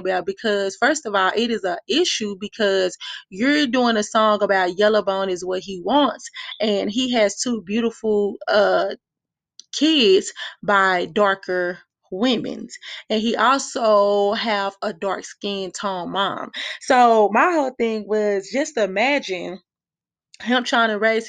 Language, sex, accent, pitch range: English, female, American, 195-235 Hz